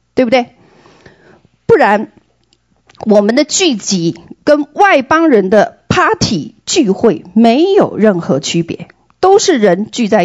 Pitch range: 180-290 Hz